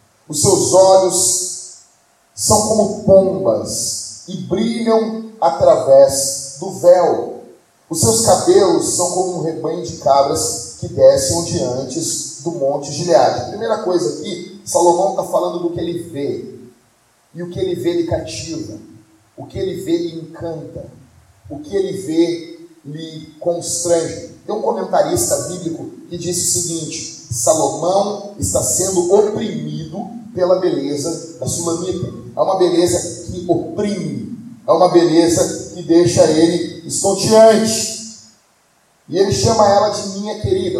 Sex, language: male, Portuguese